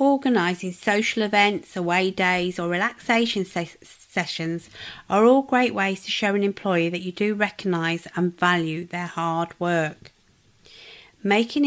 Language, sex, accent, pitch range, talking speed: English, female, British, 175-215 Hz, 140 wpm